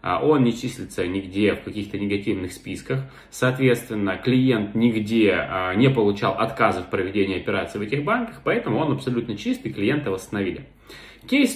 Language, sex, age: Russian, male, 20-39